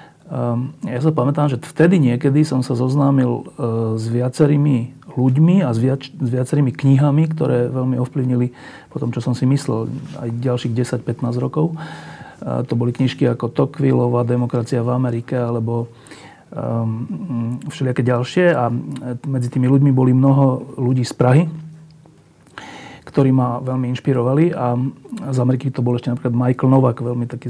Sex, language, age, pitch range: male, Slovak, 40-59, 120-140 Hz